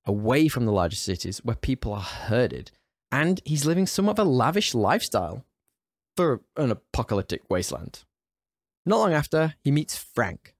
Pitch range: 115-160 Hz